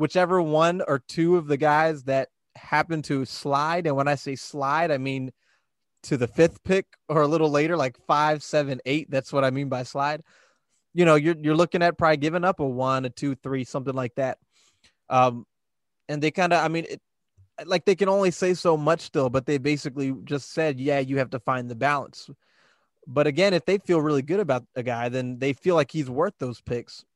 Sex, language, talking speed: male, English, 215 wpm